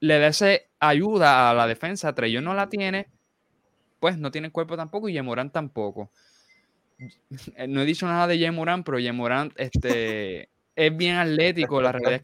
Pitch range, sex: 125-160 Hz, male